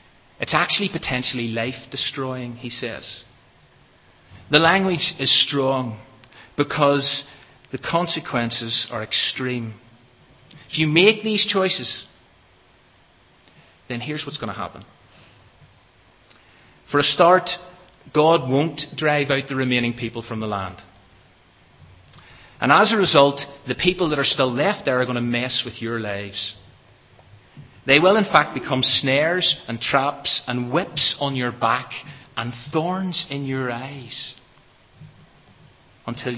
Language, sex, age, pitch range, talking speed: English, male, 30-49, 115-150 Hz, 125 wpm